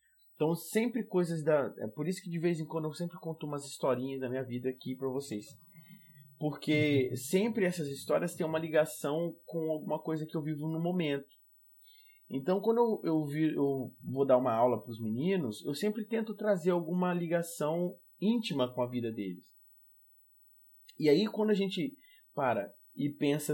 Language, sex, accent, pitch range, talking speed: Portuguese, male, Brazilian, 125-180 Hz, 175 wpm